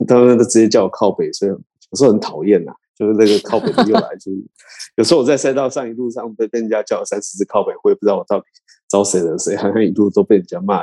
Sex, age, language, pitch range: male, 20-39, Chinese, 95-125 Hz